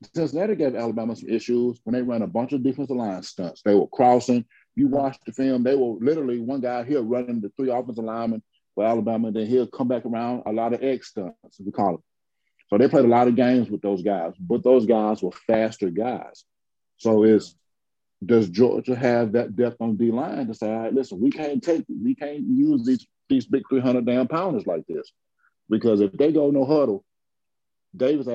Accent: American